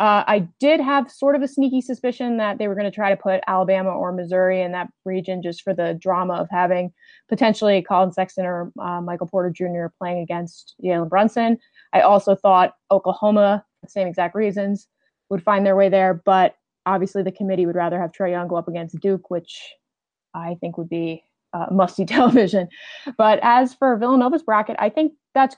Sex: female